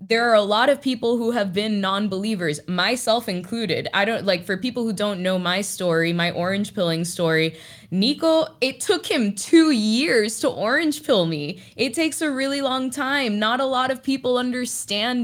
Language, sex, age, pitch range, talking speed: English, female, 20-39, 185-235 Hz, 190 wpm